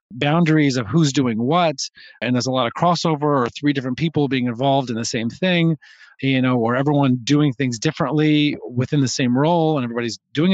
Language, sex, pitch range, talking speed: English, male, 130-150 Hz, 200 wpm